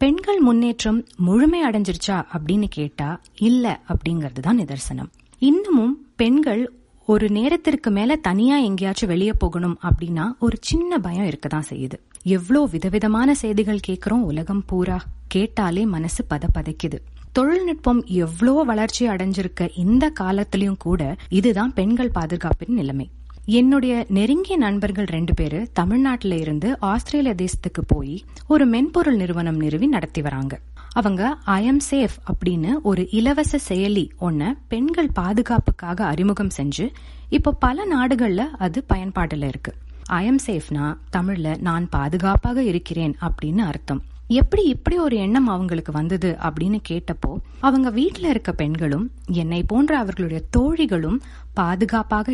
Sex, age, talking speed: female, 30-49, 100 wpm